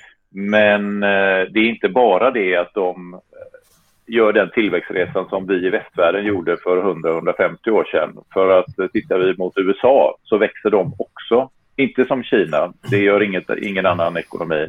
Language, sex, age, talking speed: Swedish, male, 40-59, 150 wpm